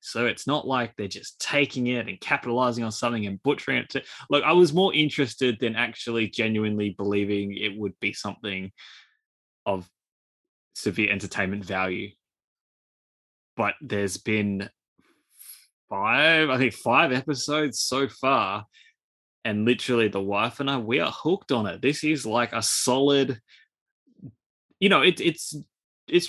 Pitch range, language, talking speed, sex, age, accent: 105-140 Hz, English, 145 wpm, male, 20-39, Australian